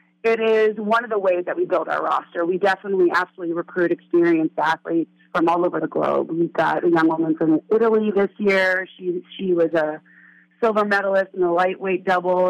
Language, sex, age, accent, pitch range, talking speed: English, female, 30-49, American, 165-190 Hz, 195 wpm